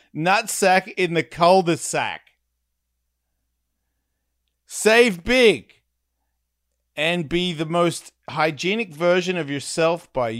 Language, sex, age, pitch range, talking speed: English, male, 40-59, 110-170 Hz, 85 wpm